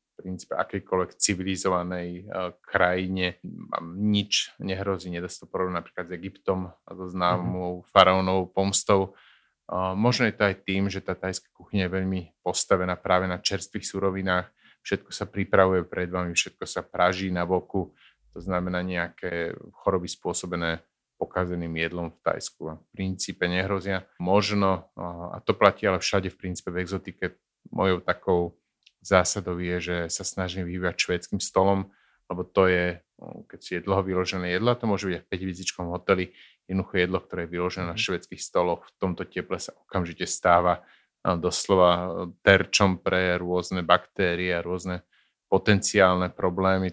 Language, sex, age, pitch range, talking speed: Slovak, male, 30-49, 90-95 Hz, 155 wpm